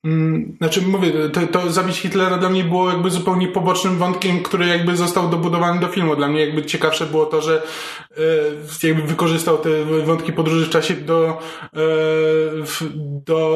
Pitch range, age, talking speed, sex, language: 155-180 Hz, 20-39, 170 wpm, male, Polish